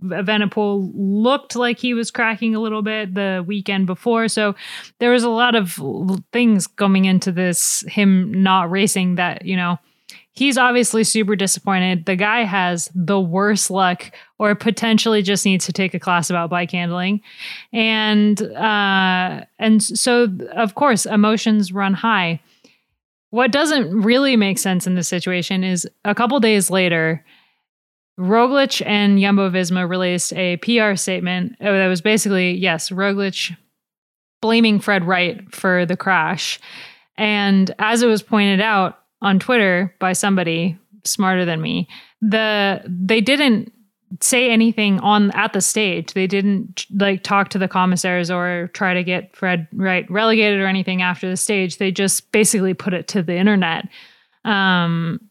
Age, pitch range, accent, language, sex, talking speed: 20-39, 185-220 Hz, American, English, female, 155 wpm